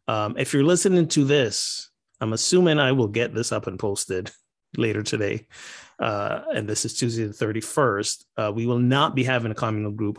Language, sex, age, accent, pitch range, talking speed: English, male, 30-49, American, 100-120 Hz, 195 wpm